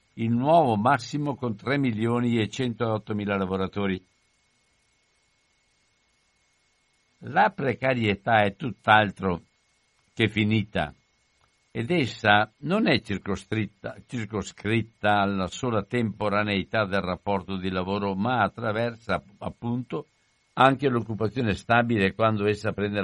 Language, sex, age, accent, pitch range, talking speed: Italian, male, 60-79, native, 95-120 Hz, 100 wpm